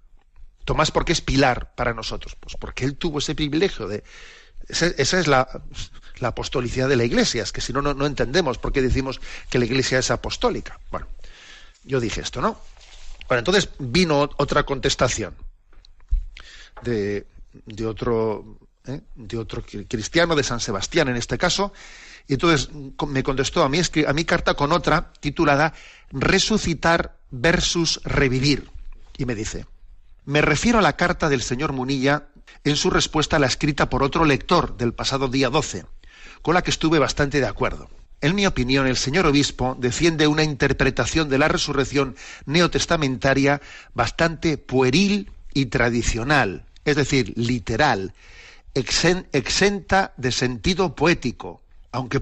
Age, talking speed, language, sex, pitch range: 40-59, 150 wpm, Spanish, male, 125-160 Hz